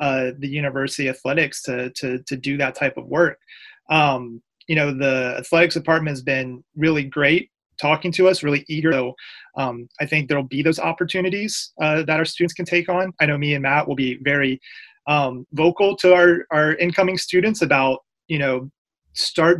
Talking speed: 185 wpm